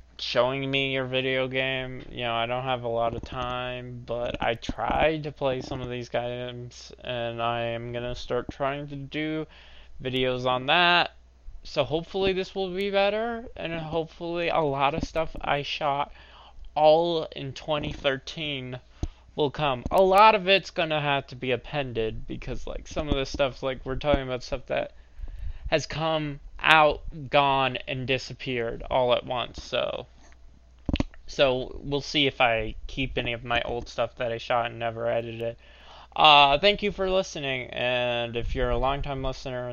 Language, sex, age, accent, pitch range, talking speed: English, male, 20-39, American, 120-145 Hz, 170 wpm